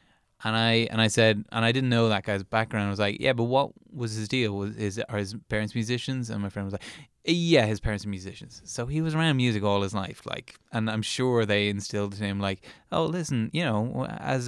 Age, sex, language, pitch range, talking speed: 20-39, male, English, 105-130 Hz, 240 wpm